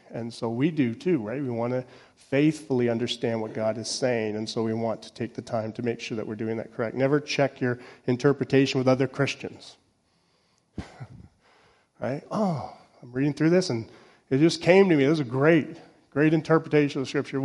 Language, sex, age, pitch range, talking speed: English, male, 40-59, 115-140 Hz, 205 wpm